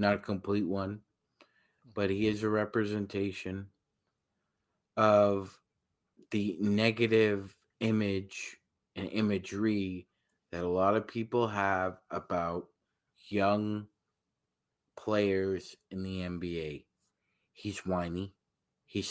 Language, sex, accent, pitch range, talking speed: English, male, American, 95-115 Hz, 95 wpm